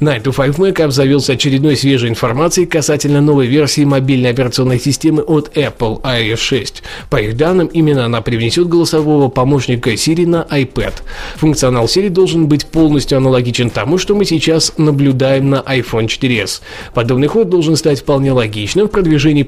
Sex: male